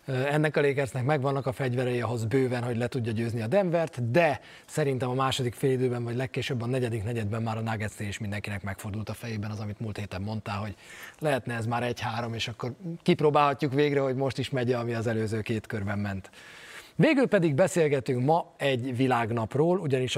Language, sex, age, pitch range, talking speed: Hungarian, male, 30-49, 115-145 Hz, 185 wpm